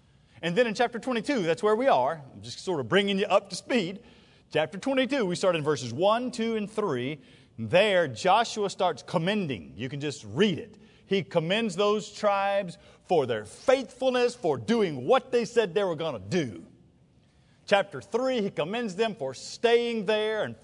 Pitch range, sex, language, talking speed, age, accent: 145-235 Hz, male, English, 185 wpm, 40-59, American